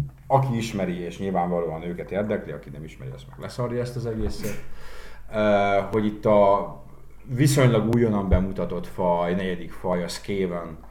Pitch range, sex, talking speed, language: 85-120 Hz, male, 155 wpm, Hungarian